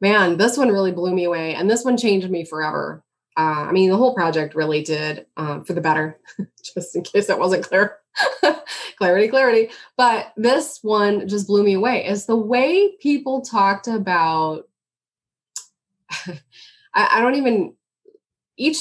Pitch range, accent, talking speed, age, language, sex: 170-230 Hz, American, 165 wpm, 20-39, English, female